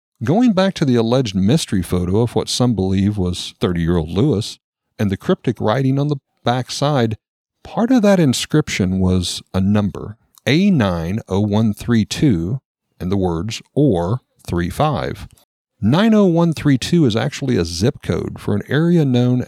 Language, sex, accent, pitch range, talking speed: English, male, American, 95-130 Hz, 135 wpm